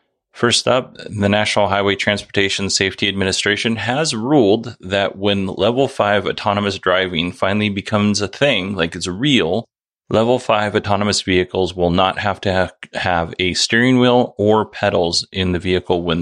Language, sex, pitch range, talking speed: English, male, 90-110 Hz, 150 wpm